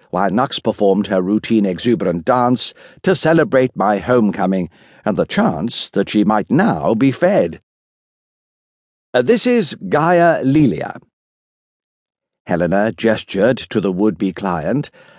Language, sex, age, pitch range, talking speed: English, male, 60-79, 110-180 Hz, 120 wpm